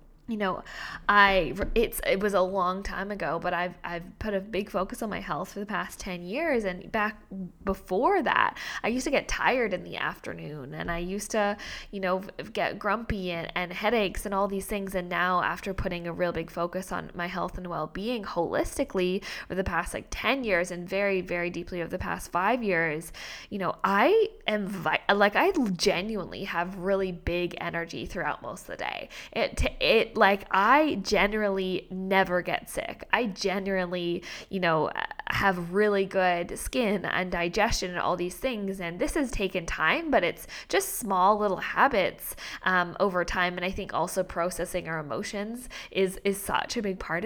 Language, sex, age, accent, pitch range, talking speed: English, female, 10-29, American, 175-210 Hz, 190 wpm